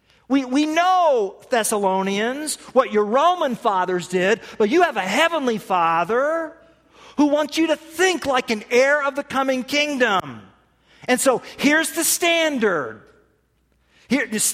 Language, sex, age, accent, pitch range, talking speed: English, male, 40-59, American, 185-290 Hz, 135 wpm